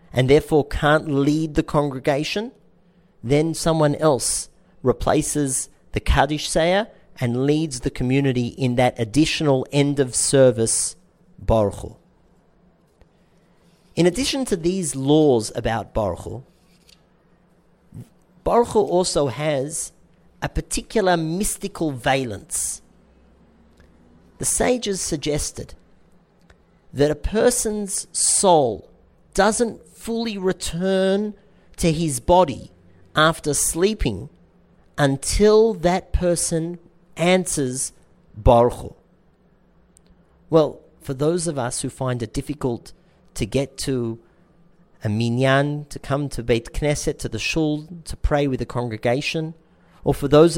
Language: English